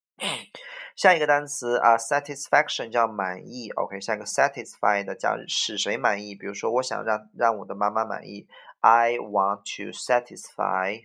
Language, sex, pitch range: Chinese, male, 100-170 Hz